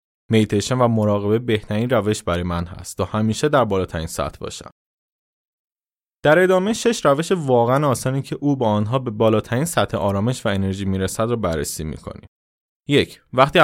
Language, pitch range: Persian, 100-125 Hz